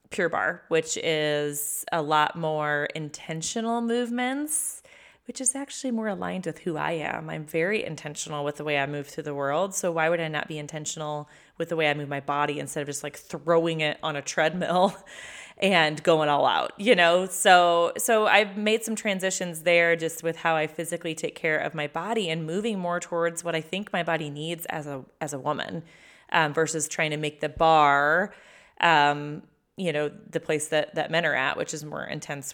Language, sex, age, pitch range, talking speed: English, female, 30-49, 155-195 Hz, 205 wpm